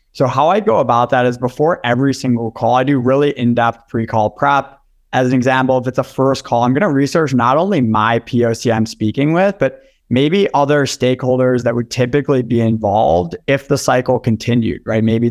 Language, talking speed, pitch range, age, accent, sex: English, 200 wpm, 115-140 Hz, 20-39, American, male